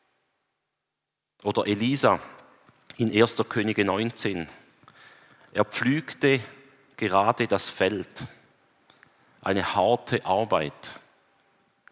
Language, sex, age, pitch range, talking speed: German, male, 40-59, 100-120 Hz, 70 wpm